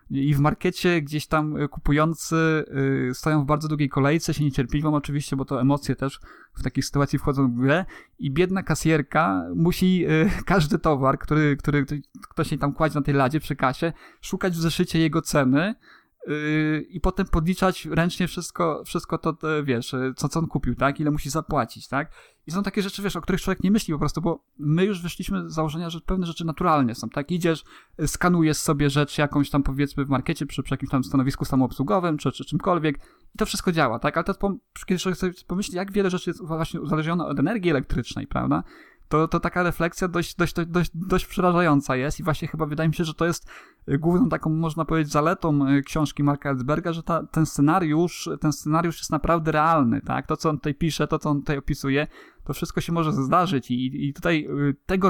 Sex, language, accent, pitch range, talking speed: male, Polish, native, 145-170 Hz, 195 wpm